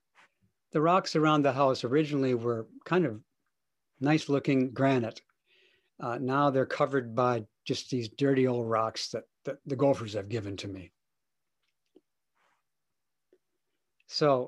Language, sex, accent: English, male, American